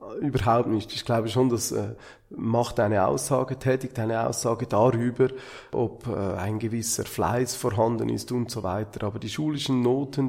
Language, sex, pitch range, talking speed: German, male, 120-145 Hz, 150 wpm